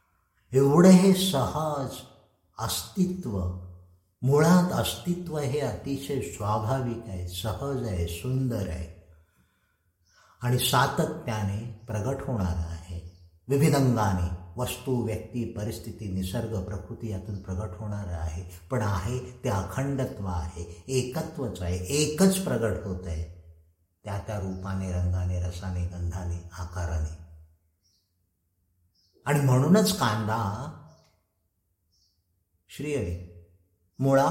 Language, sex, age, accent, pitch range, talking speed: Marathi, male, 60-79, native, 90-125 Hz, 95 wpm